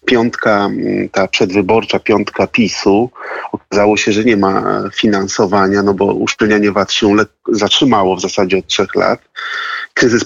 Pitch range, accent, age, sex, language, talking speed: 100-110 Hz, native, 30-49, male, Polish, 135 wpm